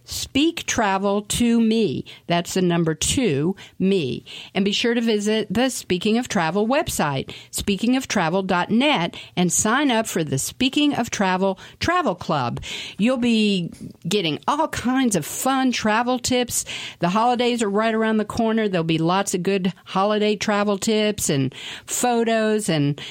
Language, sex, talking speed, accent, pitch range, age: English, female, 150 wpm, American, 170-230 Hz, 50-69